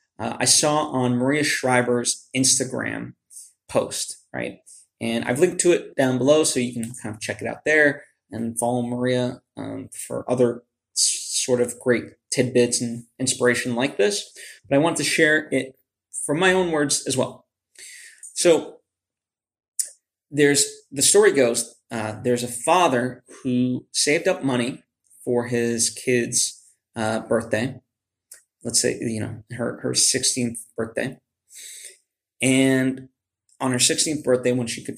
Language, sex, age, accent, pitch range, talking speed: English, male, 20-39, American, 115-130 Hz, 145 wpm